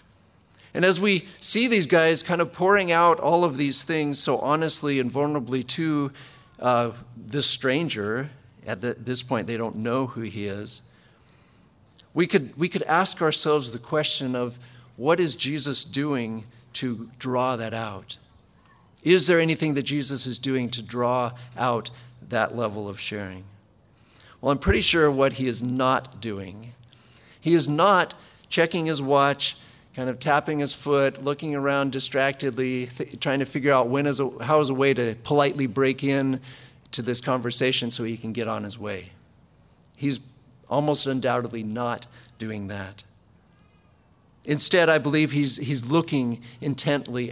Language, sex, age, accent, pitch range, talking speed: English, male, 50-69, American, 120-145 Hz, 155 wpm